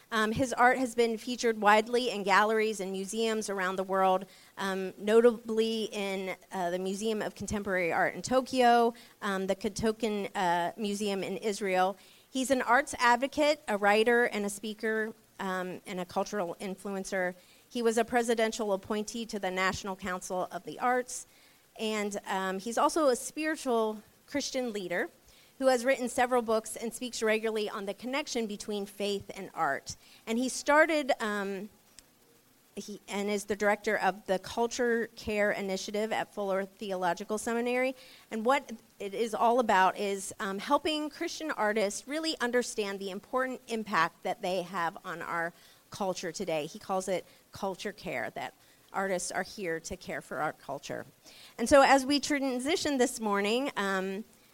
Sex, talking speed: female, 160 wpm